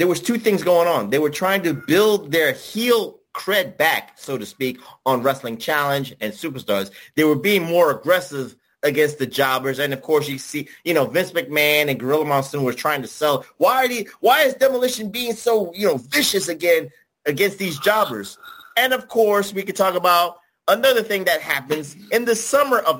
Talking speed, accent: 200 wpm, American